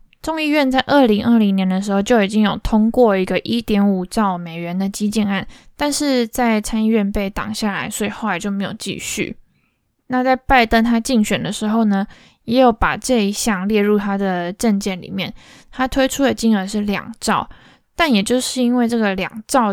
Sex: female